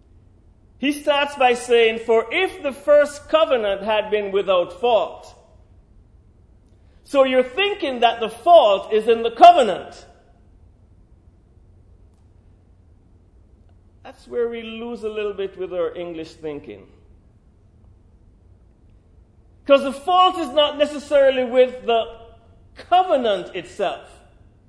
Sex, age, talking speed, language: male, 40-59, 105 wpm, English